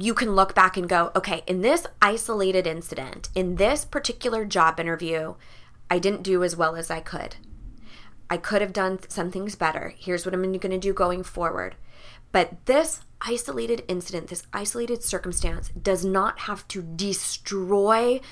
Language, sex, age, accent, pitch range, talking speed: English, female, 20-39, American, 180-230 Hz, 165 wpm